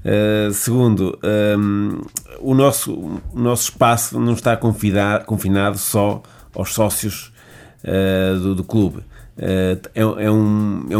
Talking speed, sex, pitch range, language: 130 wpm, male, 95-115 Hz, Portuguese